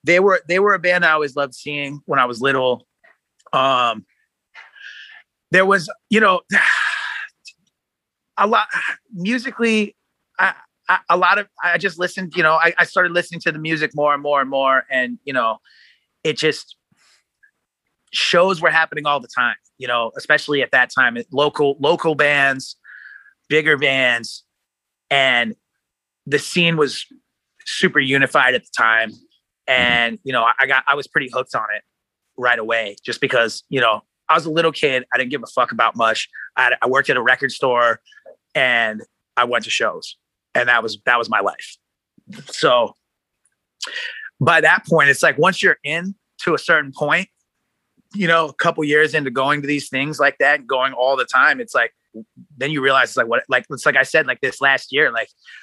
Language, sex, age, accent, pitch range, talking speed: English, male, 30-49, American, 135-185 Hz, 185 wpm